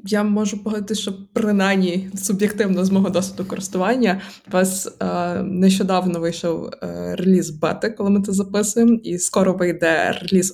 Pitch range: 180-205 Hz